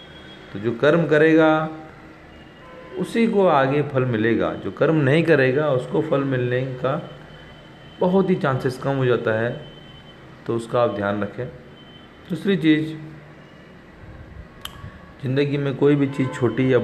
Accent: native